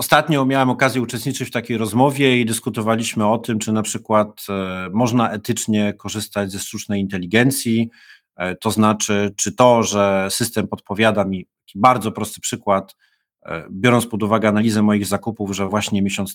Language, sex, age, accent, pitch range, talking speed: Polish, male, 30-49, native, 105-120 Hz, 145 wpm